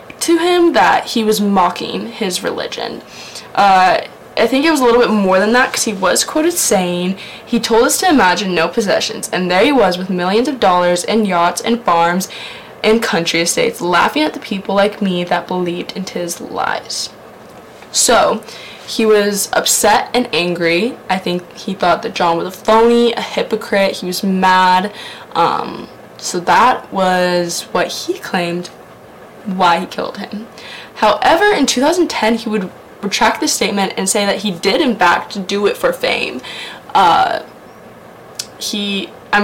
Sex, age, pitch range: female, 10-29, 180-235 Hz